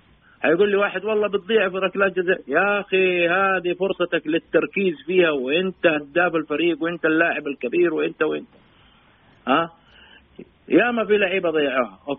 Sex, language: male, English